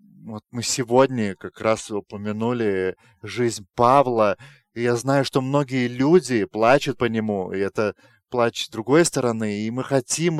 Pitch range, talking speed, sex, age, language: 120-150 Hz, 150 wpm, male, 30-49, English